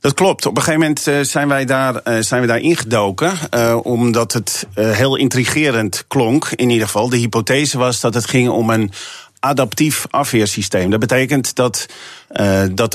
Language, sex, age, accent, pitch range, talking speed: Dutch, male, 40-59, Dutch, 115-140 Hz, 160 wpm